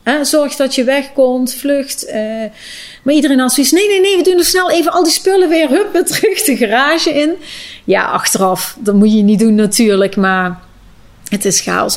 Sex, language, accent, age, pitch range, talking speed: female, Dutch, Dutch, 30-49, 180-220 Hz, 205 wpm